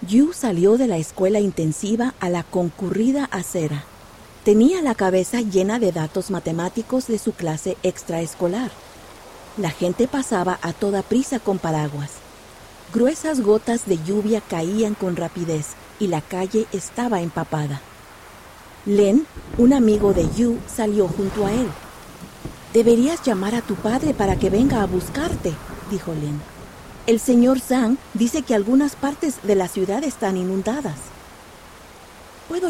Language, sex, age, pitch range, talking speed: Spanish, female, 40-59, 180-235 Hz, 140 wpm